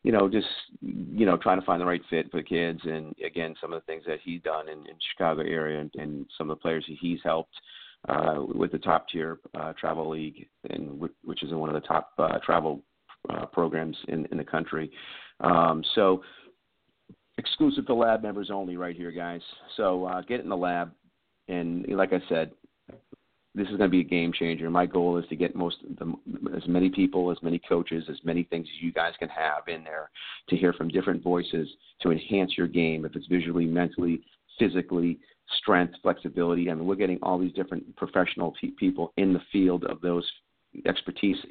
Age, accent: 40-59, American